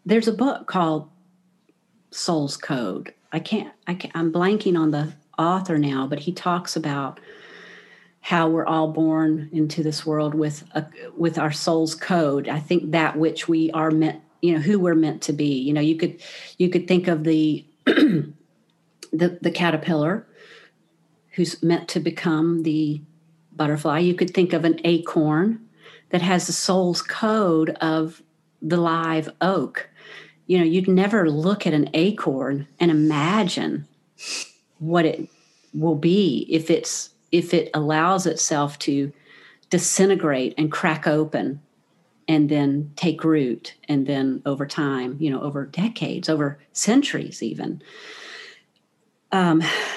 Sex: female